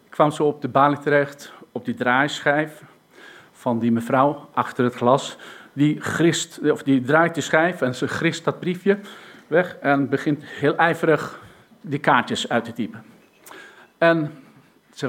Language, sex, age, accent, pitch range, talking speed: Dutch, male, 50-69, Dutch, 140-195 Hz, 160 wpm